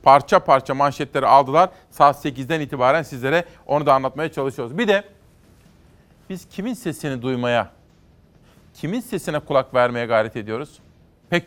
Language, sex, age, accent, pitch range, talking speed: Turkish, male, 40-59, native, 125-155 Hz, 130 wpm